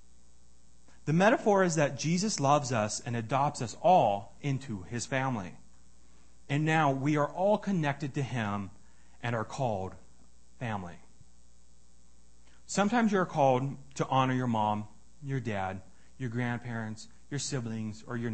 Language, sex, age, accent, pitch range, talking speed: English, male, 30-49, American, 95-150 Hz, 135 wpm